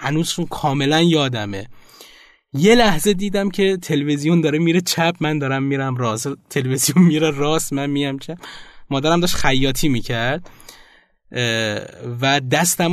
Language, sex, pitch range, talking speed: Persian, male, 125-170 Hz, 125 wpm